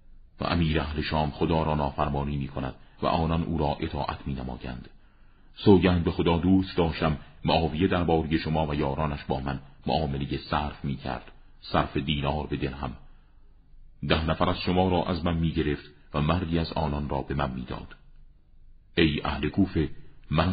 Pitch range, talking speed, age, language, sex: 75-85 Hz, 160 wpm, 40-59, Persian, male